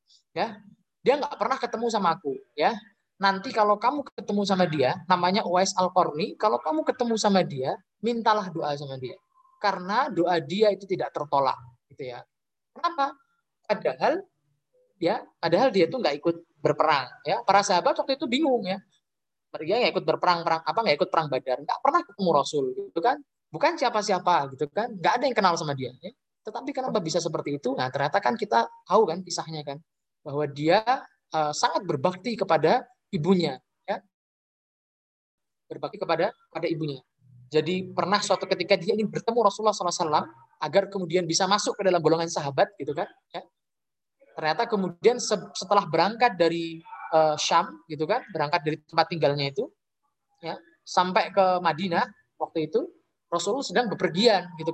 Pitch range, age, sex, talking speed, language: 160-220 Hz, 20-39, male, 160 wpm, Malay